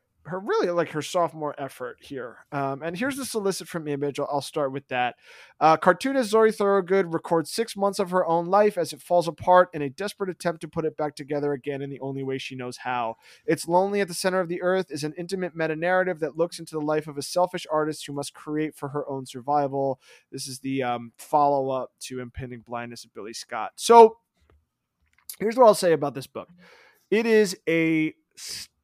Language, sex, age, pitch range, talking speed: English, male, 20-39, 140-180 Hz, 215 wpm